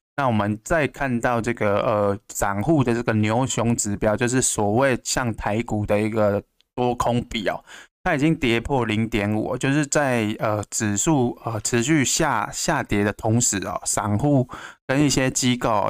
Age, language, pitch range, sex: 20-39, Chinese, 105-125 Hz, male